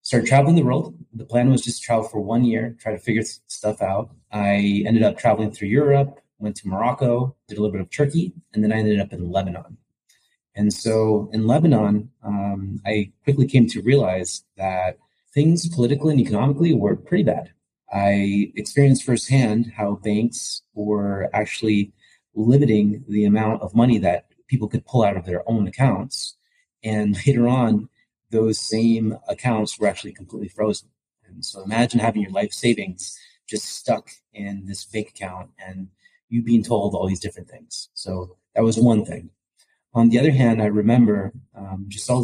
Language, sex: English, male